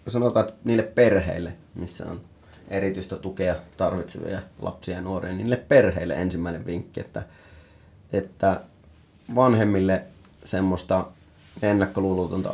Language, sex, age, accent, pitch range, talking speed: Finnish, male, 30-49, native, 85-105 Hz, 100 wpm